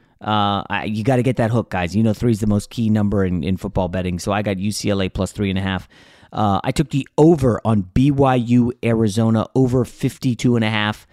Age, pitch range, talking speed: 30-49, 100-130 Hz, 230 wpm